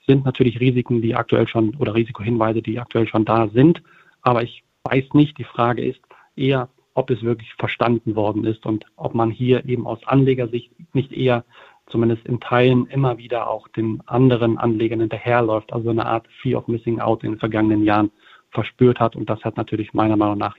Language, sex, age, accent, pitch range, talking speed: German, male, 40-59, German, 110-125 Hz, 190 wpm